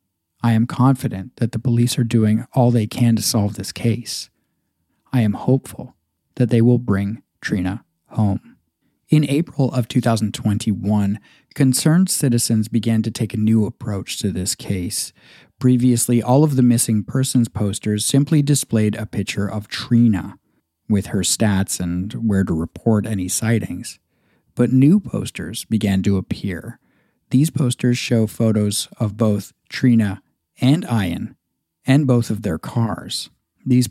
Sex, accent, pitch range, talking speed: male, American, 105-130 Hz, 145 wpm